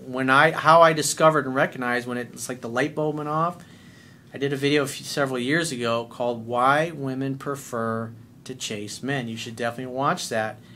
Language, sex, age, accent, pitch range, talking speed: English, male, 40-59, American, 115-150 Hz, 190 wpm